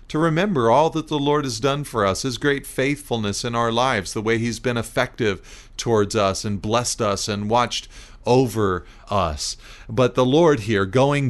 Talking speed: 185 wpm